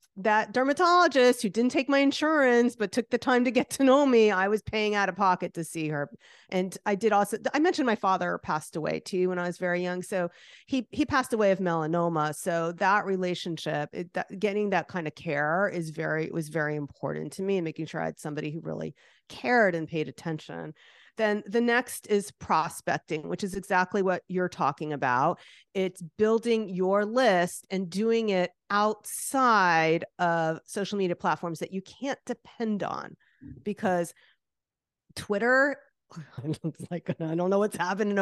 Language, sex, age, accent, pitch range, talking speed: English, female, 40-59, American, 170-225 Hz, 175 wpm